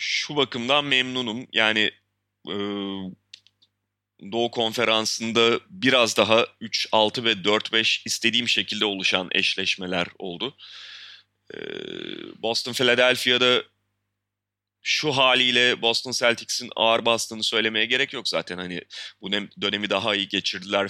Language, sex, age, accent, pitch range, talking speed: Turkish, male, 30-49, native, 100-130 Hz, 100 wpm